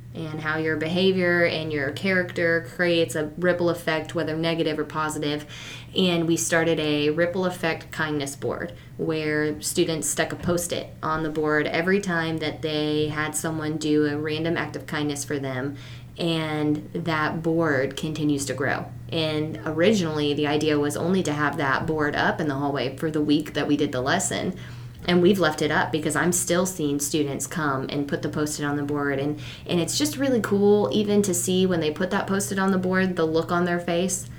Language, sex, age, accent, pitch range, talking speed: English, female, 20-39, American, 150-175 Hz, 195 wpm